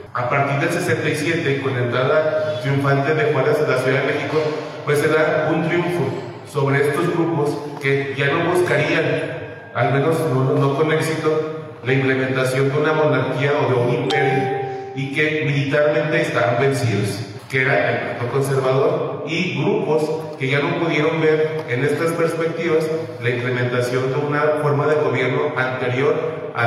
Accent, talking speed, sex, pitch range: Mexican, 160 wpm, male, 130-155 Hz